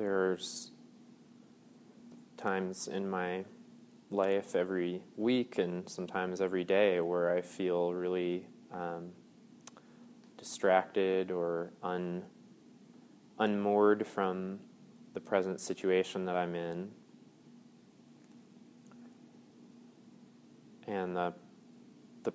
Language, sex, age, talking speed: English, male, 20-39, 80 wpm